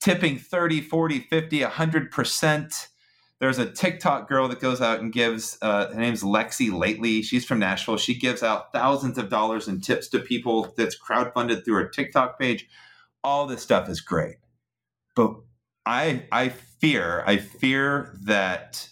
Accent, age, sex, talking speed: American, 30-49, male, 155 wpm